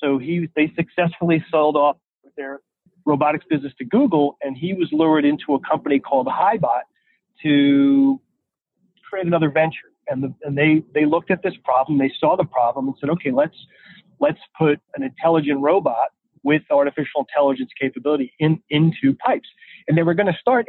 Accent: American